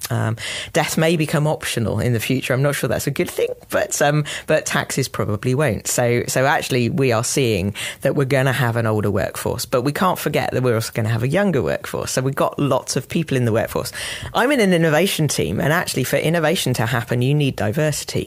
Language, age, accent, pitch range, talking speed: English, 40-59, British, 120-150 Hz, 235 wpm